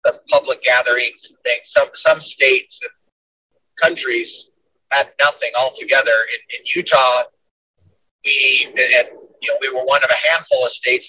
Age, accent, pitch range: 40-59, American, 280-470 Hz